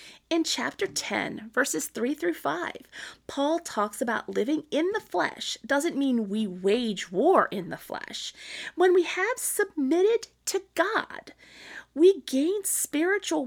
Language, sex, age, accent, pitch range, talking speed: English, female, 30-49, American, 270-355 Hz, 140 wpm